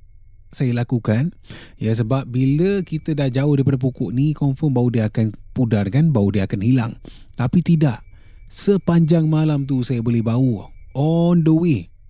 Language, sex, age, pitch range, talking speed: Malay, male, 20-39, 105-130 Hz, 160 wpm